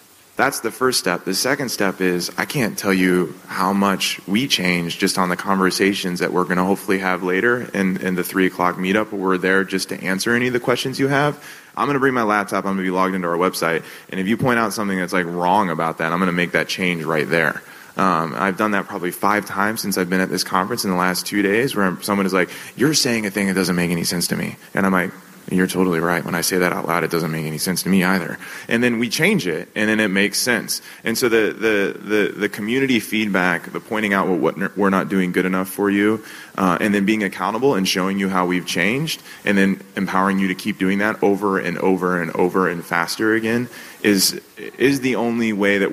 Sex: male